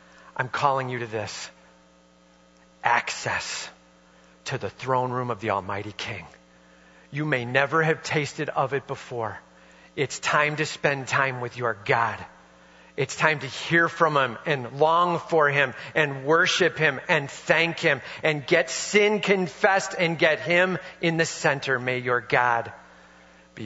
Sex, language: male, English